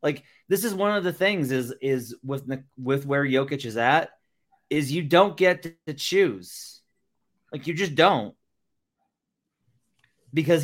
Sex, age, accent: male, 30-49, American